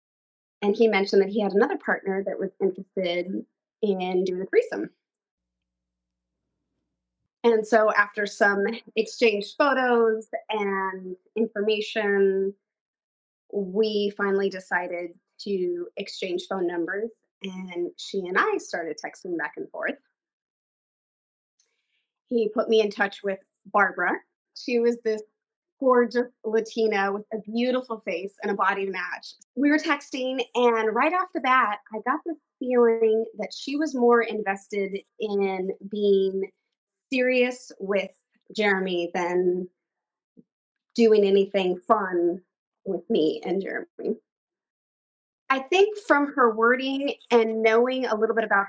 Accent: American